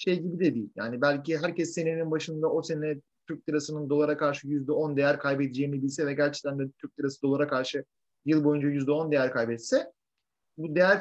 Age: 30-49